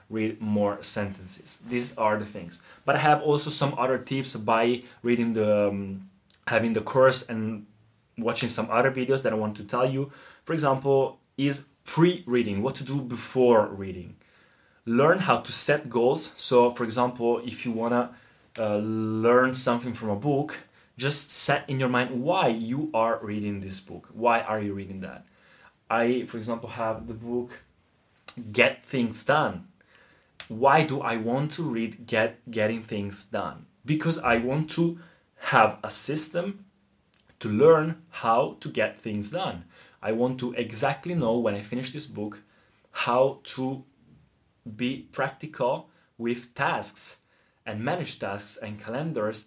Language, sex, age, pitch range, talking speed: Italian, male, 20-39, 110-140 Hz, 155 wpm